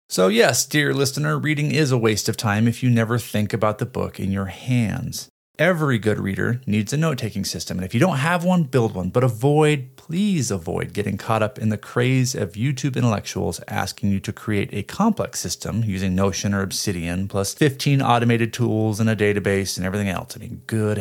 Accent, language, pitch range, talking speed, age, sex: American, English, 105-140 Hz, 205 wpm, 30-49, male